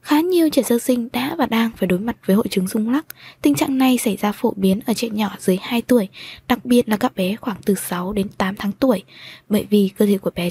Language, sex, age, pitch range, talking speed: Vietnamese, female, 20-39, 205-260 Hz, 270 wpm